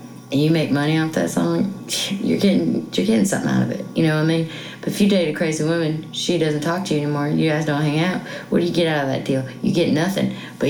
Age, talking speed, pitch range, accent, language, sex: 20-39, 280 wpm, 135-170 Hz, American, English, female